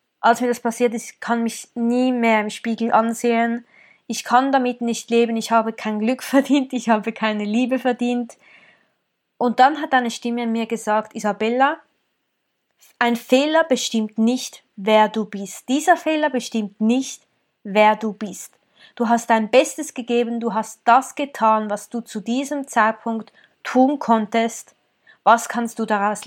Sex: female